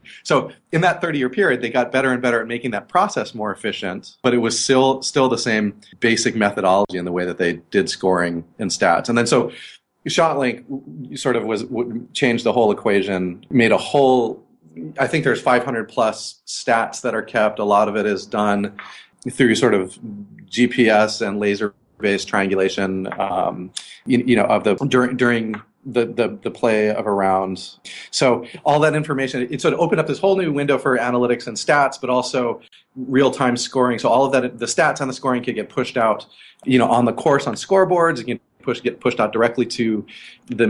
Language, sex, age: English, male, 30-49